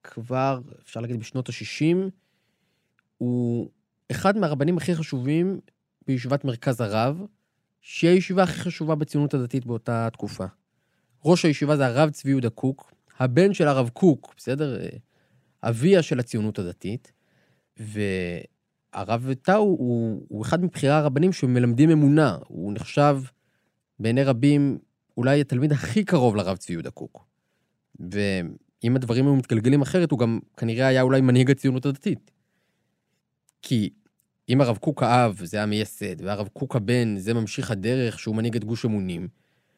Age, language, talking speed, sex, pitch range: 20-39, Hebrew, 135 wpm, male, 115-150 Hz